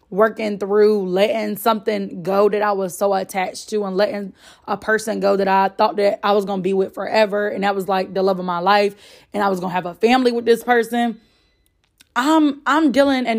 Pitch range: 200-235 Hz